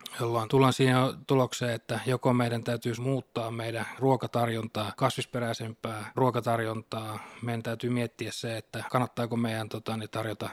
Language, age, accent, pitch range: Finnish, 20-39, native, 115-125 Hz